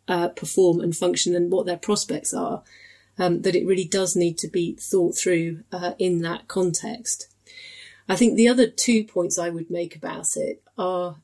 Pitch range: 175-195 Hz